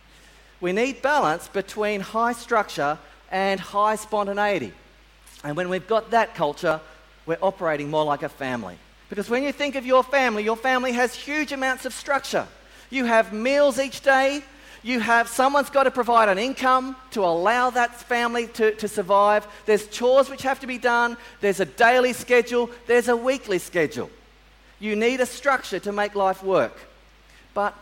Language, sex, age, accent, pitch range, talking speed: English, male, 40-59, Australian, 165-250 Hz, 170 wpm